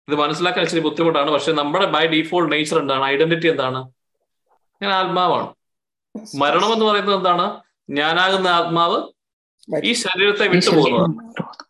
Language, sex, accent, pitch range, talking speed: Malayalam, male, native, 155-195 Hz, 120 wpm